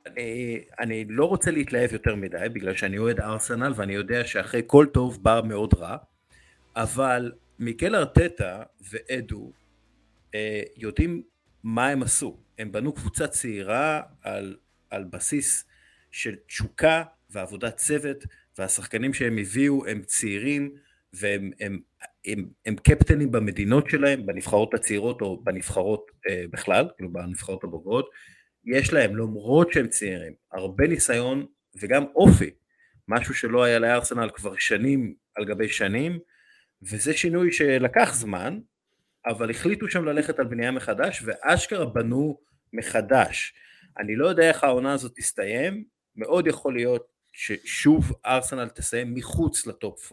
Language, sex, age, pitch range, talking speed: Hebrew, male, 50-69, 110-145 Hz, 130 wpm